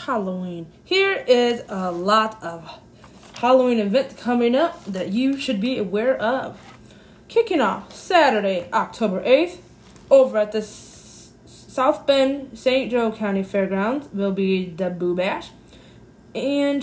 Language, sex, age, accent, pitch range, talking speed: English, female, 20-39, American, 195-265 Hz, 130 wpm